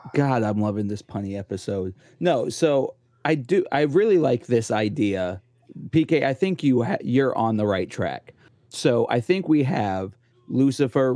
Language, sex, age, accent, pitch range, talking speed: English, male, 30-49, American, 115-140 Hz, 165 wpm